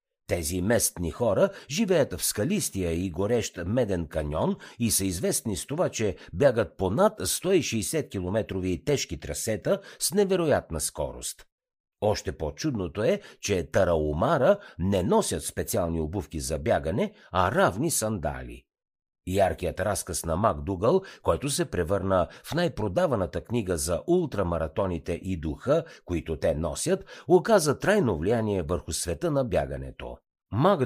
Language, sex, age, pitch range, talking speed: Bulgarian, male, 50-69, 85-120 Hz, 125 wpm